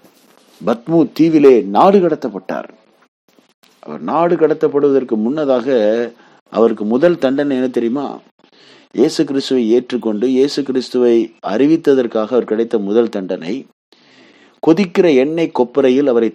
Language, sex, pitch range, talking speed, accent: Tamil, male, 115-145 Hz, 100 wpm, native